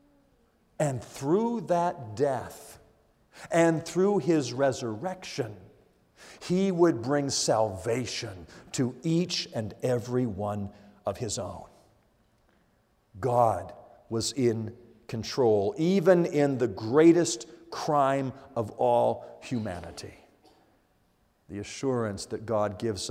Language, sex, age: English, male, 50-69